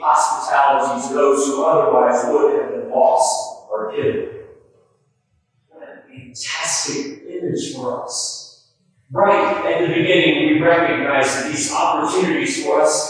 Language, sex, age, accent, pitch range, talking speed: English, male, 40-59, American, 140-220 Hz, 130 wpm